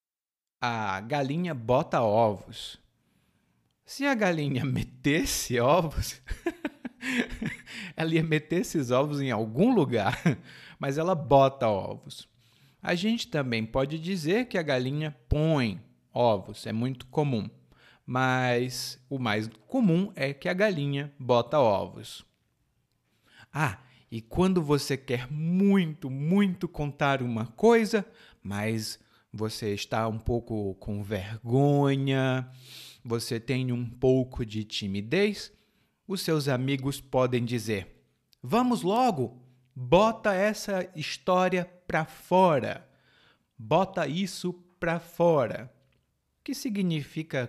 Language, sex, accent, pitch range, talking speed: Portuguese, male, Brazilian, 115-170 Hz, 110 wpm